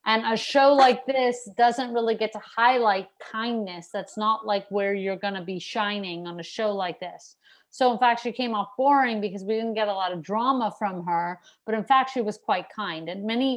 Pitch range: 200-245 Hz